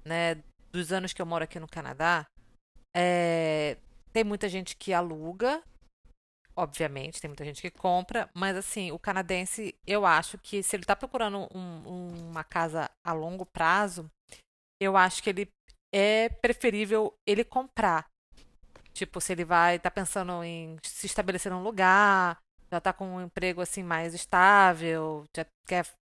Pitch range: 170-210 Hz